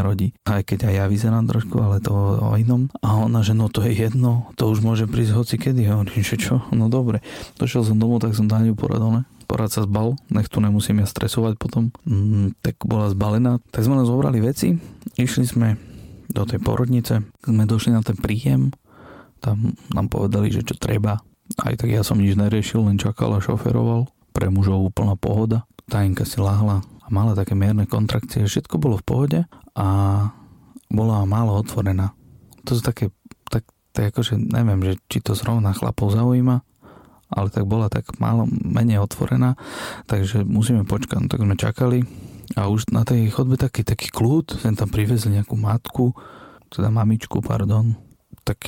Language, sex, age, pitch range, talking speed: Slovak, male, 30-49, 105-120 Hz, 175 wpm